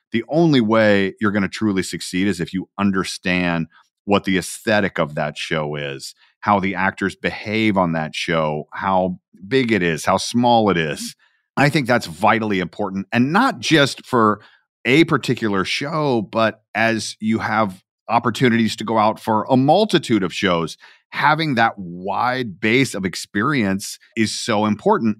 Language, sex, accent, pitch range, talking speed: English, male, American, 100-145 Hz, 160 wpm